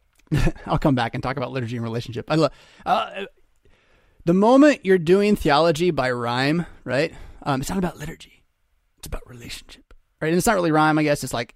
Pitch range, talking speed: 135-205 Hz, 195 wpm